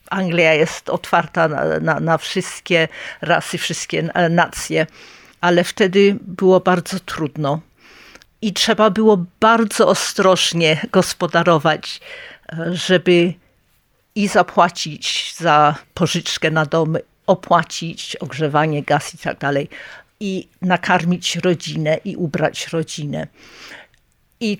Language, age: Polish, 50-69